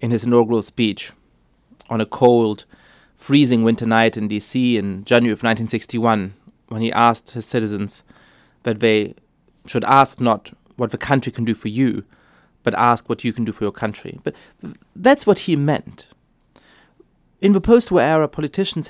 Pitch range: 115-150 Hz